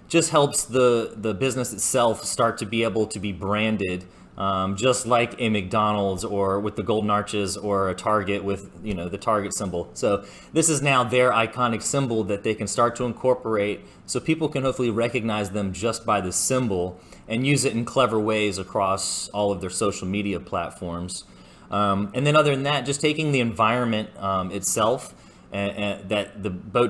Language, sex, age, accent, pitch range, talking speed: English, male, 30-49, American, 100-120 Hz, 185 wpm